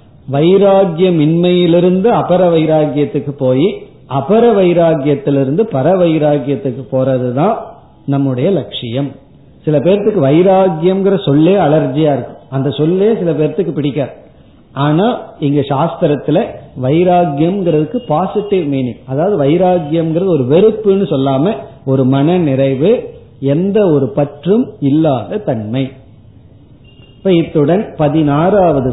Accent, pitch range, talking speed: native, 135-180 Hz, 90 wpm